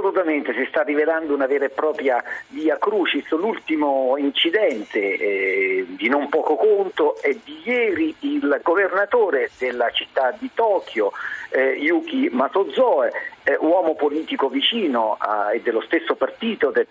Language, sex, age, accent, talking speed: Italian, male, 50-69, native, 140 wpm